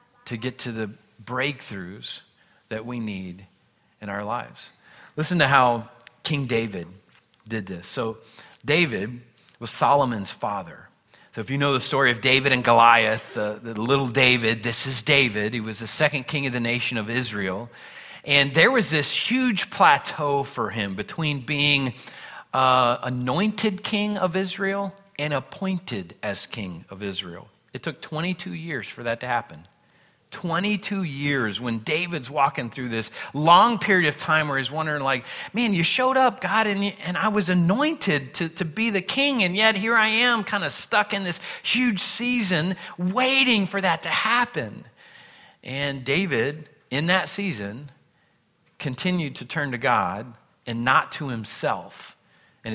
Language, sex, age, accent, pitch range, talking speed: English, male, 40-59, American, 120-185 Hz, 160 wpm